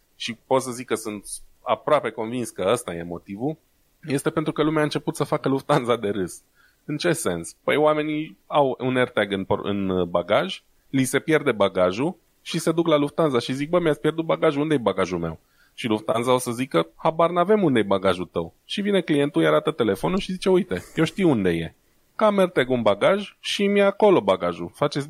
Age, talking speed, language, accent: 20-39, 200 wpm, Romanian, native